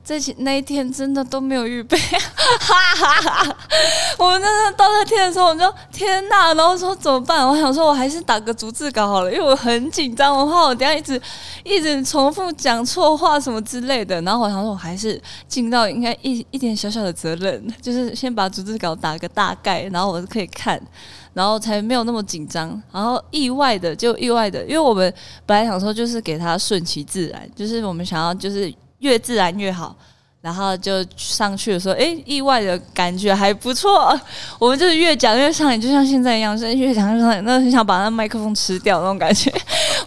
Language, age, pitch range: Chinese, 20-39, 195-280 Hz